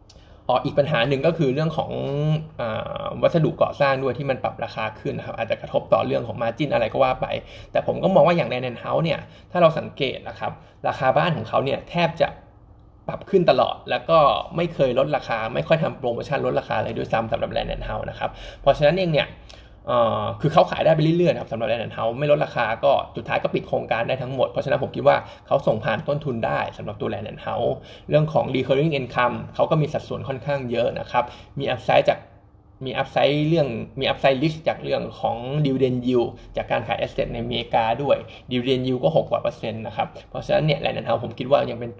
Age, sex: 20-39, male